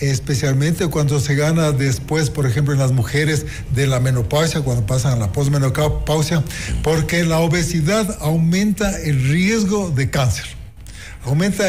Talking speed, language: 140 wpm, Spanish